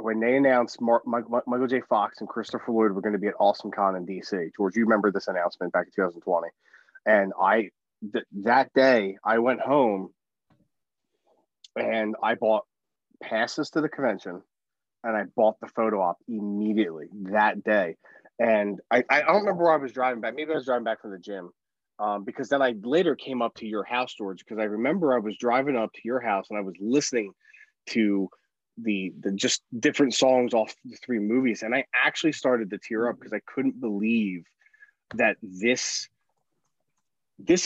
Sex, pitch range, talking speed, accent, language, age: male, 105-130 Hz, 185 wpm, American, English, 30-49